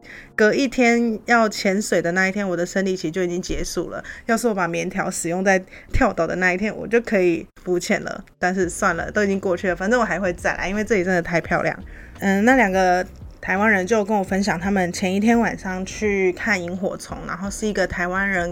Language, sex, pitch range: Chinese, female, 175-210 Hz